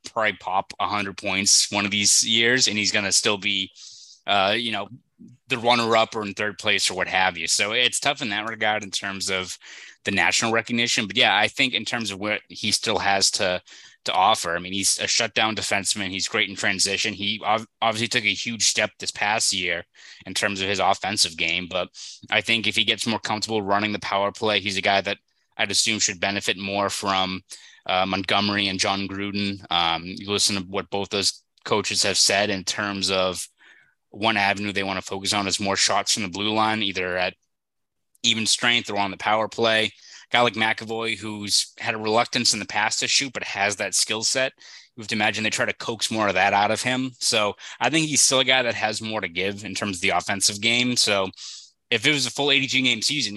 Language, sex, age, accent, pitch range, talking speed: English, male, 20-39, American, 100-115 Hz, 225 wpm